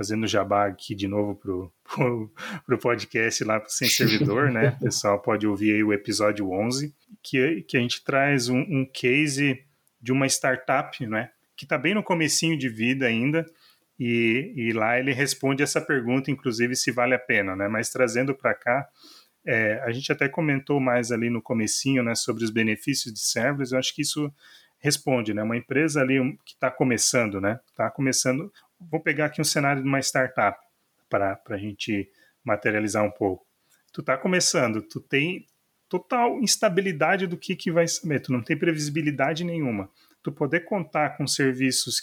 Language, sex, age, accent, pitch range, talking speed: Portuguese, male, 30-49, Brazilian, 115-150 Hz, 175 wpm